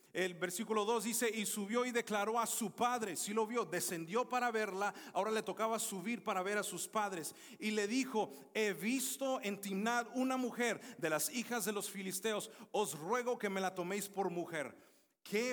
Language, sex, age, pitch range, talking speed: English, male, 40-59, 185-235 Hz, 195 wpm